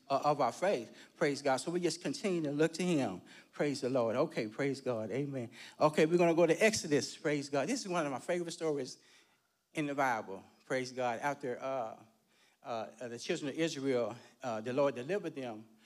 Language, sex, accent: English, male, American